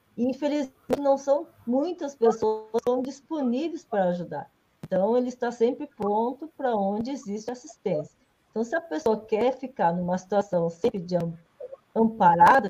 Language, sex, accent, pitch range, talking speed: Portuguese, female, Brazilian, 190-235 Hz, 140 wpm